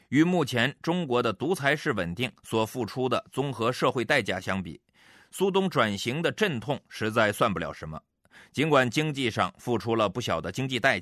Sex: male